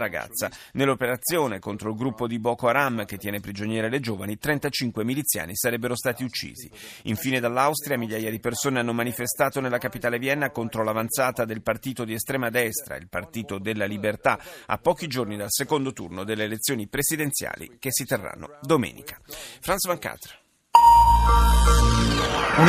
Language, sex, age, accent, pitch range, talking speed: Italian, male, 40-59, native, 110-145 Hz, 145 wpm